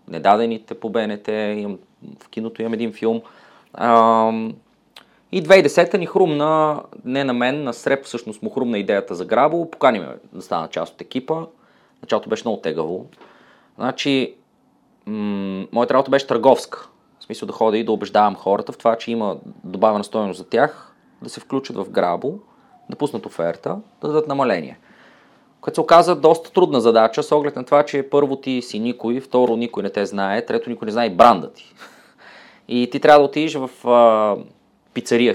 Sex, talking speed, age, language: male, 170 wpm, 30-49, Bulgarian